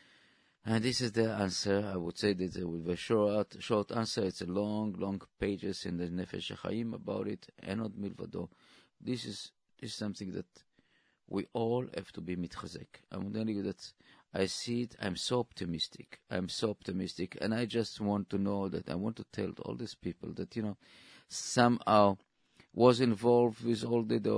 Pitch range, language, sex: 95-115 Hz, English, male